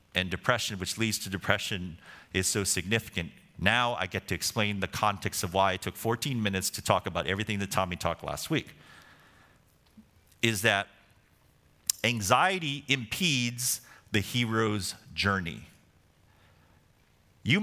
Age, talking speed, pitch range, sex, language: 40-59, 135 wpm, 95-135 Hz, male, English